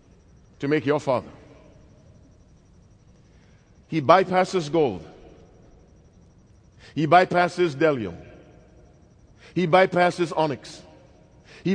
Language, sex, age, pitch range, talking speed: English, male, 50-69, 150-215 Hz, 70 wpm